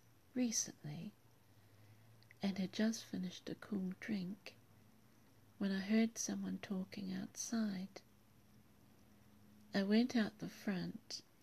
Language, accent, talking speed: English, British, 100 wpm